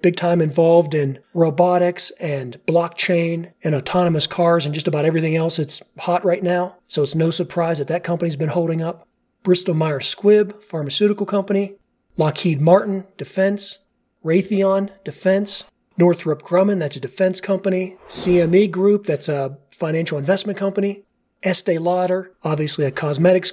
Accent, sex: American, male